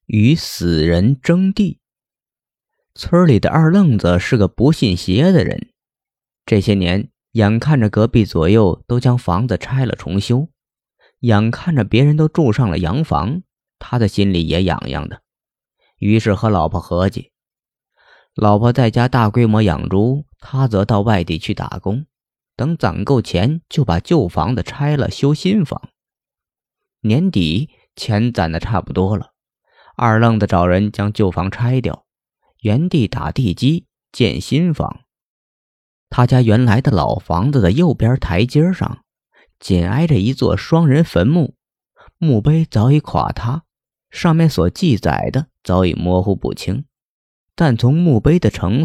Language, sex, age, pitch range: Chinese, male, 20-39, 95-140 Hz